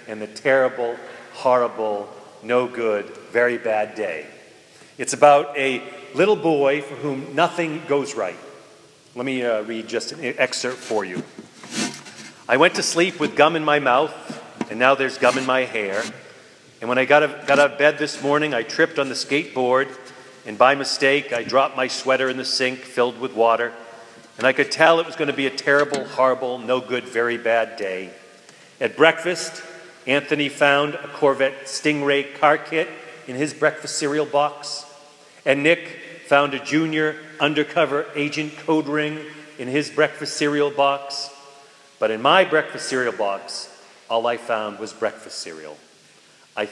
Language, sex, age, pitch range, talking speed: English, male, 40-59, 125-150 Hz, 165 wpm